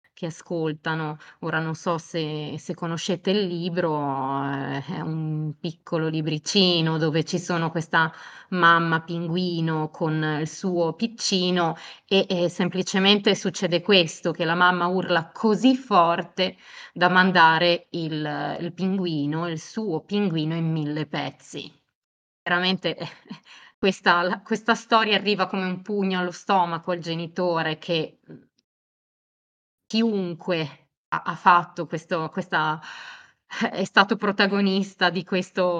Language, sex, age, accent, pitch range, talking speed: Italian, female, 20-39, native, 160-185 Hz, 115 wpm